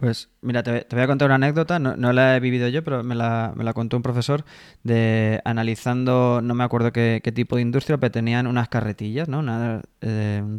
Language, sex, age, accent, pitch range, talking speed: Spanish, male, 20-39, Spanish, 115-130 Hz, 225 wpm